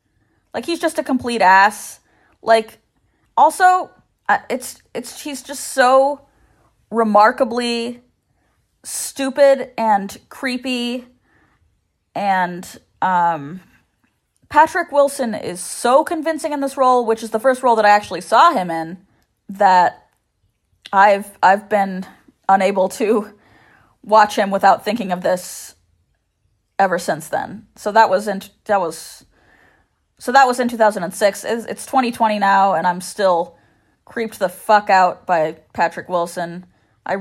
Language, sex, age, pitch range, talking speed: English, female, 20-39, 165-225 Hz, 125 wpm